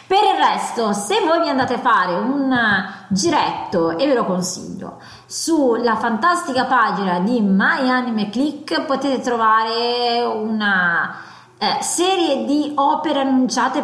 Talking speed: 130 wpm